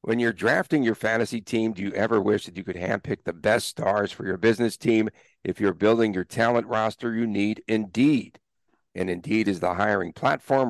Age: 50-69